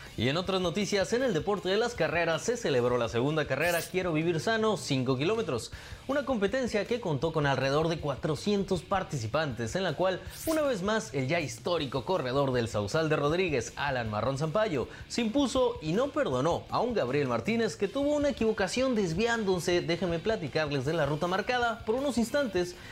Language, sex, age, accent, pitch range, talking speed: Spanish, male, 30-49, Mexican, 135-210 Hz, 180 wpm